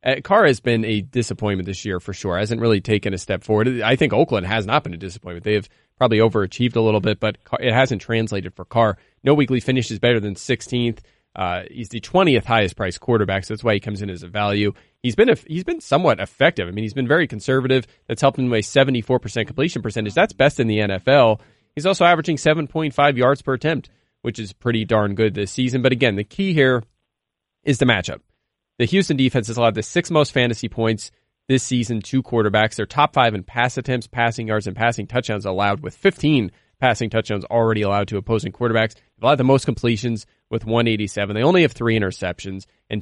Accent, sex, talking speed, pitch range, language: American, male, 215 wpm, 105-130 Hz, English